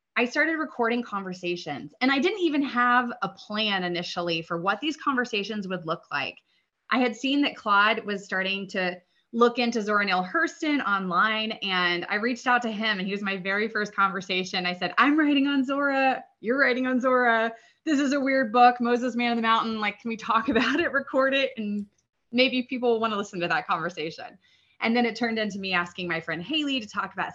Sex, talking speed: female, 215 wpm